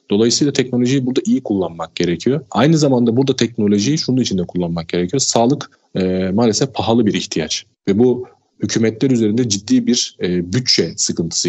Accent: native